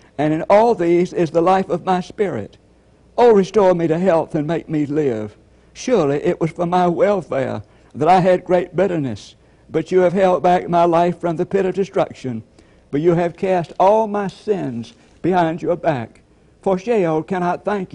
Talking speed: 185 wpm